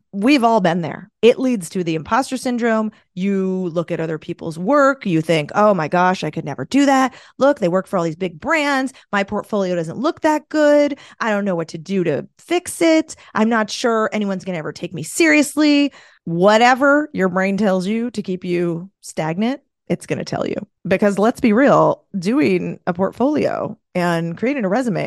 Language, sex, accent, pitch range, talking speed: English, female, American, 190-295 Hz, 200 wpm